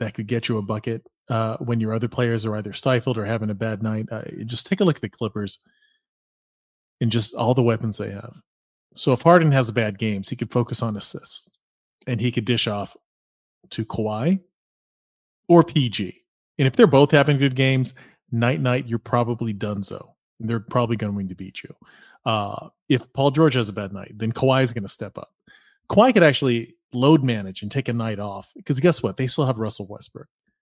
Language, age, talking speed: English, 30-49, 210 wpm